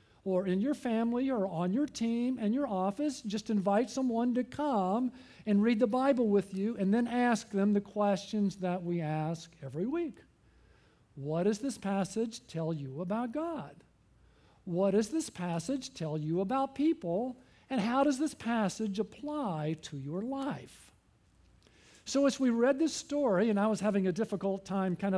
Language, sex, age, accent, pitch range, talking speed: English, male, 50-69, American, 195-260 Hz, 170 wpm